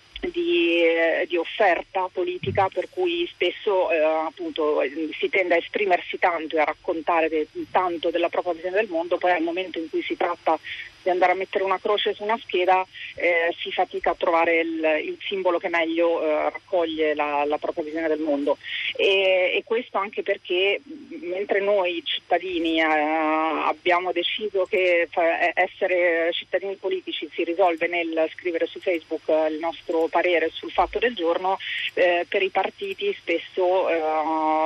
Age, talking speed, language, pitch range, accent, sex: 30-49, 165 wpm, Italian, 165-195 Hz, native, female